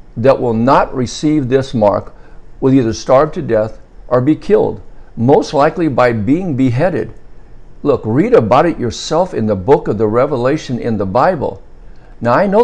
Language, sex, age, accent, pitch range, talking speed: English, male, 60-79, American, 110-145 Hz, 170 wpm